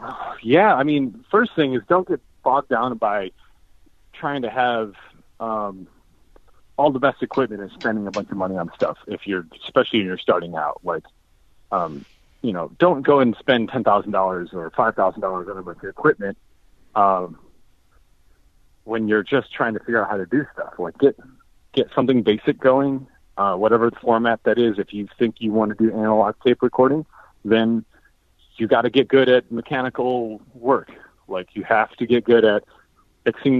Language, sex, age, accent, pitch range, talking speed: English, male, 30-49, American, 100-125 Hz, 190 wpm